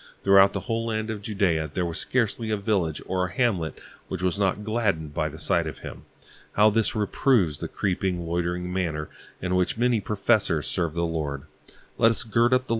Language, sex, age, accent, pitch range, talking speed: English, male, 30-49, American, 80-100 Hz, 195 wpm